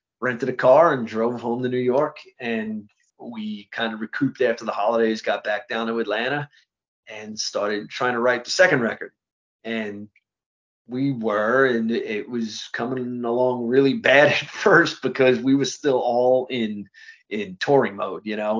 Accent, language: American, English